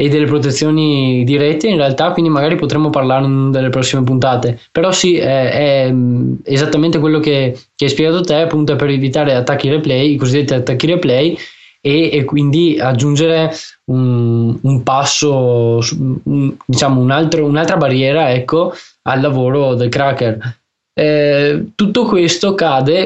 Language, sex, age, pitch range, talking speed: Italian, male, 20-39, 130-160 Hz, 145 wpm